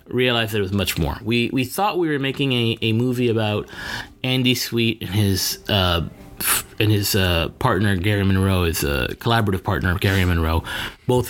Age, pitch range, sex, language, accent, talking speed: 30-49, 95-130 Hz, male, English, American, 175 wpm